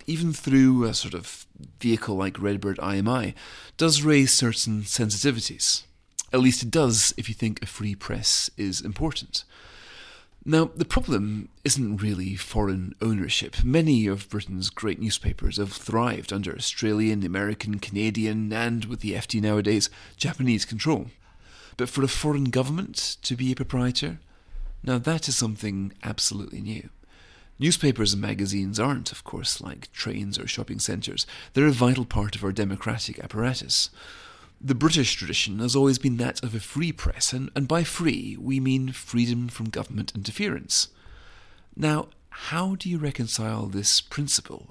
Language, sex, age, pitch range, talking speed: English, male, 40-59, 105-135 Hz, 150 wpm